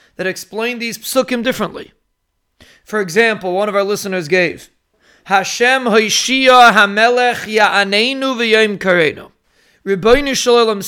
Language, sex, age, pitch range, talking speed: English, male, 30-49, 195-245 Hz, 95 wpm